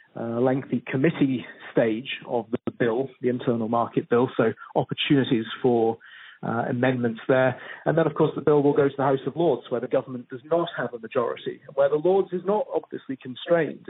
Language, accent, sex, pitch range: English, British, male, 120-145 Hz